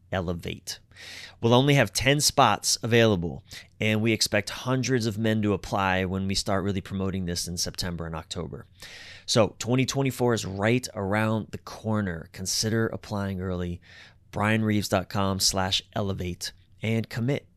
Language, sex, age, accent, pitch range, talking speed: English, male, 30-49, American, 95-120 Hz, 135 wpm